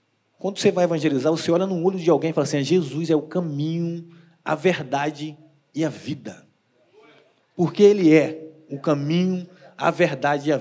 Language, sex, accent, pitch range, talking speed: Portuguese, male, Brazilian, 150-190 Hz, 175 wpm